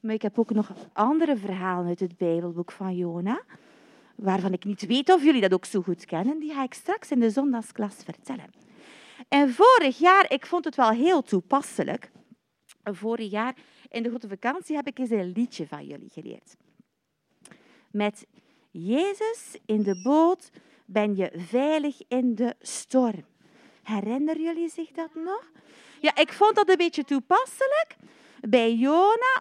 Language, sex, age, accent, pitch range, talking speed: Dutch, female, 40-59, Dutch, 205-310 Hz, 160 wpm